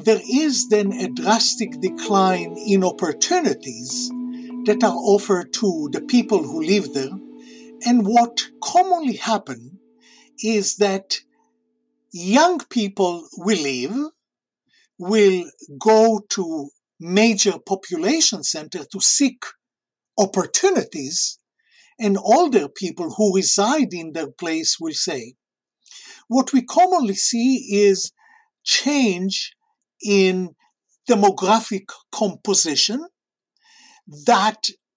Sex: male